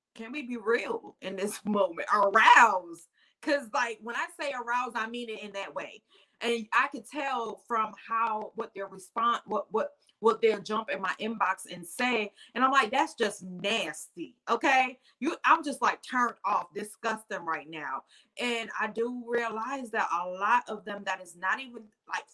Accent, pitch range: American, 205-260 Hz